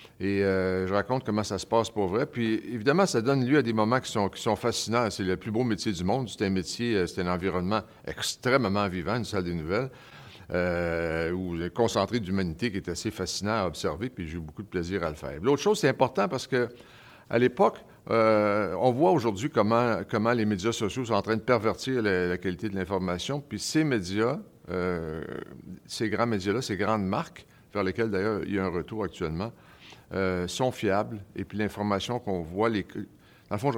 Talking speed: 215 wpm